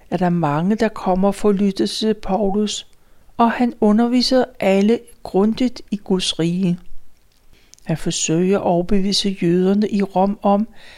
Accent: native